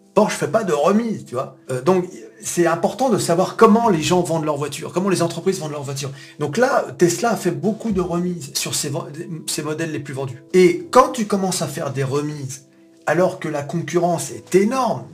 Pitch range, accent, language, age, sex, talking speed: 135-190 Hz, French, French, 40-59, male, 220 wpm